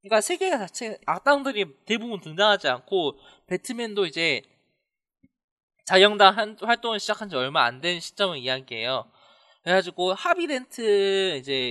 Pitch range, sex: 150-220 Hz, male